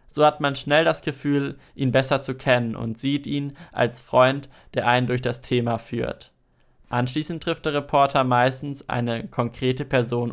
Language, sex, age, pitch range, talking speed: German, male, 20-39, 120-140 Hz, 170 wpm